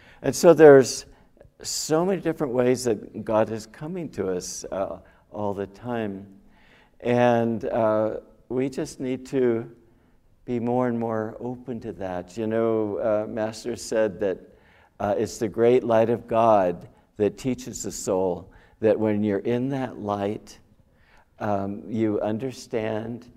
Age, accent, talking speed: 60-79, American, 145 wpm